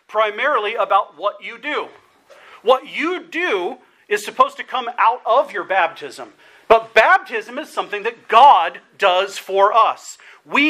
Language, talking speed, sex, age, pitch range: English, 145 wpm, male, 40-59, 215-300 Hz